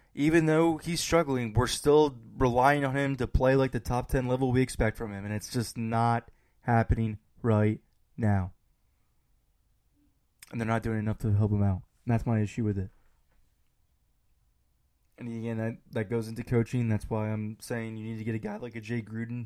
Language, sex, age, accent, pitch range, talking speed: English, male, 20-39, American, 110-120 Hz, 195 wpm